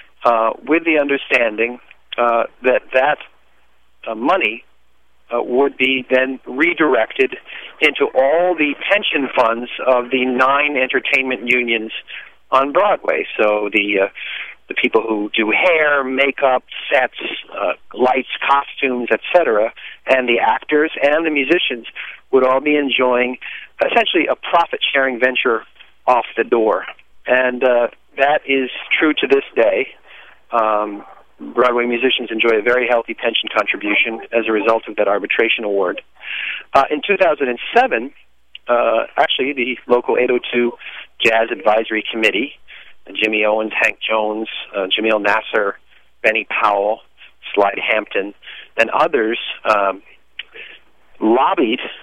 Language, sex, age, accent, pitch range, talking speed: English, male, 50-69, American, 115-140 Hz, 125 wpm